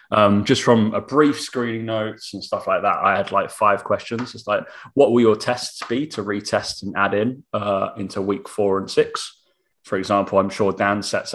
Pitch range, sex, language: 100-120 Hz, male, English